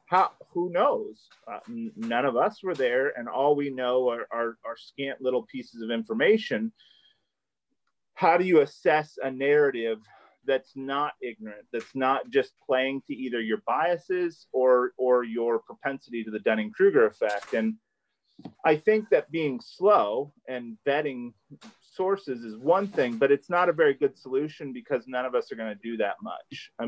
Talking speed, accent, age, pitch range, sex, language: 175 wpm, American, 30-49, 115-150 Hz, male, English